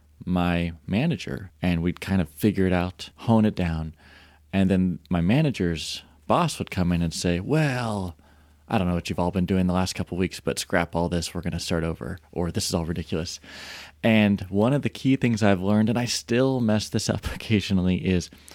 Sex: male